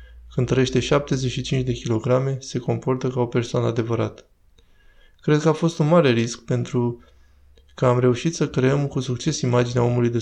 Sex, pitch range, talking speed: male, 120-135 Hz, 170 wpm